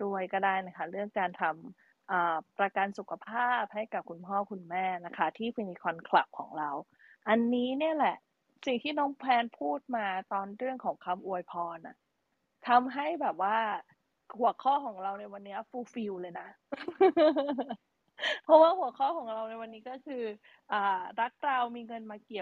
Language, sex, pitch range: Thai, female, 190-245 Hz